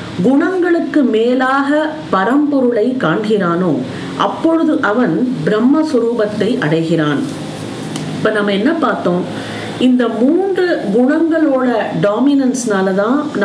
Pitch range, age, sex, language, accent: 210-285 Hz, 40-59, female, Tamil, native